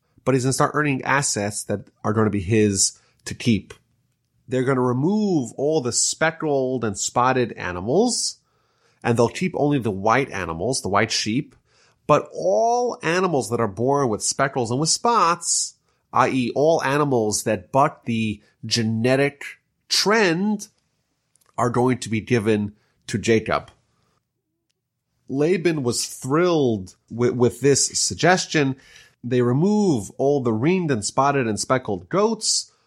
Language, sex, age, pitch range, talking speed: English, male, 30-49, 115-150 Hz, 140 wpm